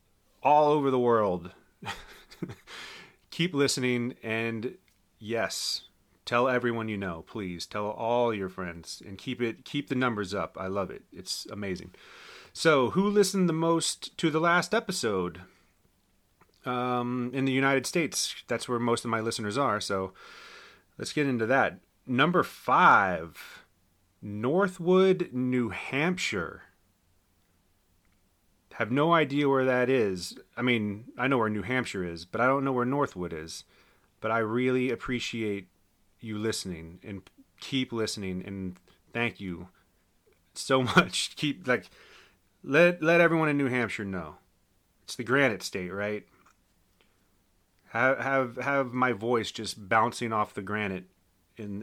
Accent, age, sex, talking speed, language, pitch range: American, 30-49, male, 140 wpm, English, 95-130 Hz